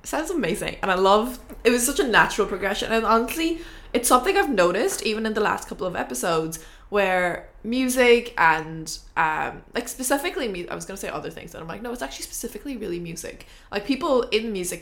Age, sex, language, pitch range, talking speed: 20-39, female, English, 185-245 Hz, 200 wpm